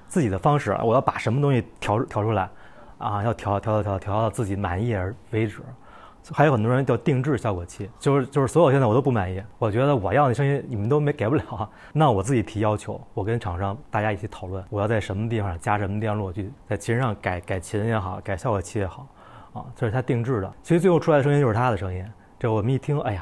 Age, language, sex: 20-39, English, male